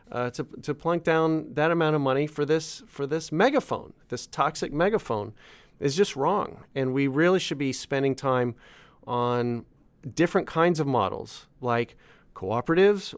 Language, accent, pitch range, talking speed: English, American, 140-185 Hz, 150 wpm